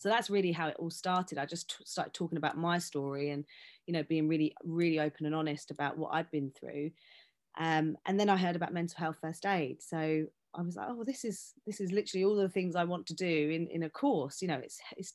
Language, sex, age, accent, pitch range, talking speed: English, female, 30-49, British, 155-180 Hz, 255 wpm